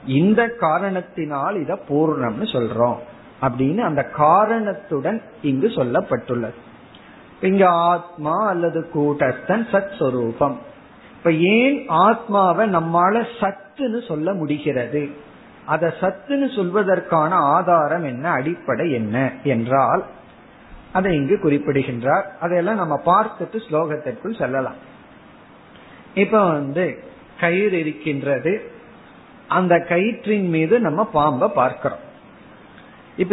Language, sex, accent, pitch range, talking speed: Tamil, male, native, 150-210 Hz, 80 wpm